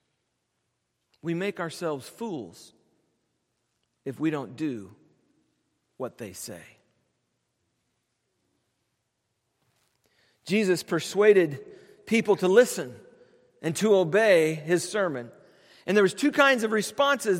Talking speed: 95 wpm